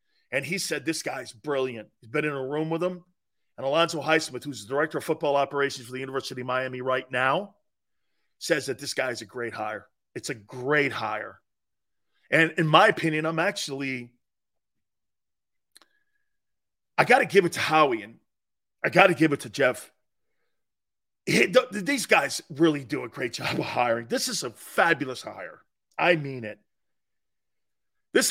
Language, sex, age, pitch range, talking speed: English, male, 40-59, 135-215 Hz, 165 wpm